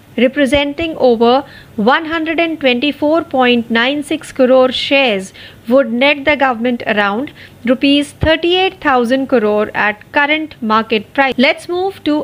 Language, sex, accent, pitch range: Marathi, female, native, 230-295 Hz